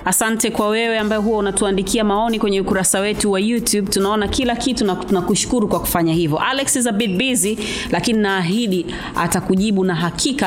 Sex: female